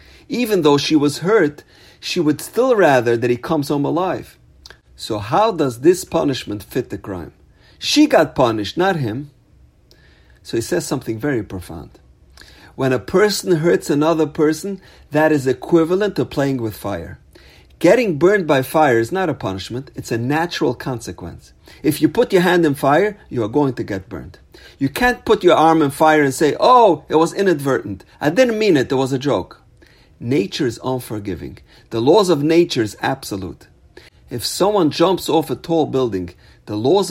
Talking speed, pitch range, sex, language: 180 wpm, 110-165 Hz, male, English